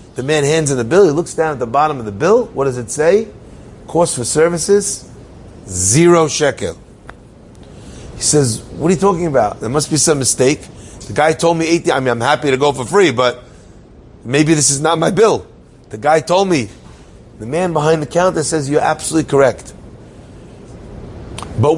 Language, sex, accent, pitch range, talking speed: English, male, American, 135-185 Hz, 195 wpm